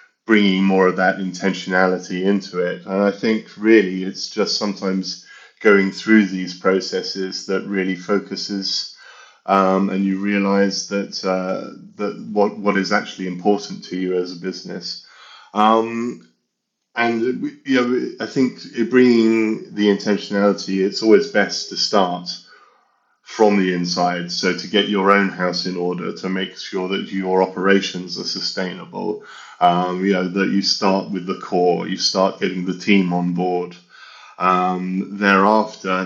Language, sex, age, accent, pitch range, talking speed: English, male, 30-49, British, 90-100 Hz, 150 wpm